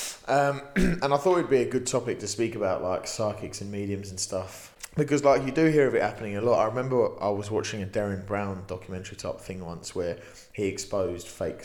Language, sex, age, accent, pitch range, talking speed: English, male, 20-39, British, 95-120 Hz, 225 wpm